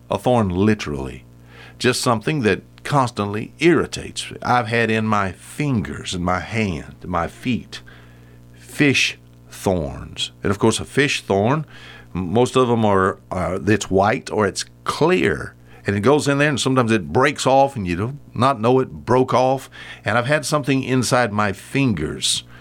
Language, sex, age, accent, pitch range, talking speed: English, male, 50-69, American, 95-140 Hz, 165 wpm